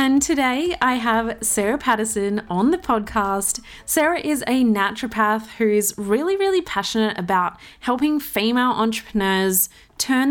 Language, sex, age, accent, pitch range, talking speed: English, female, 20-39, Australian, 205-270 Hz, 135 wpm